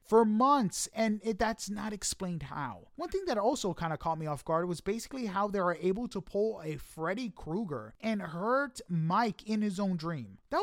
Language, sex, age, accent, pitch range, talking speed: English, male, 30-49, American, 165-235 Hz, 210 wpm